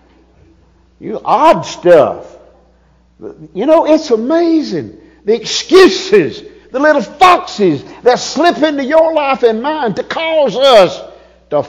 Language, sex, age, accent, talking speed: English, male, 50-69, American, 120 wpm